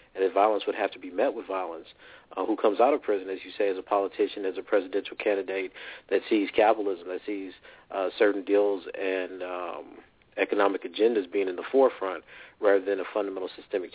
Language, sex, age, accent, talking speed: English, male, 40-59, American, 200 wpm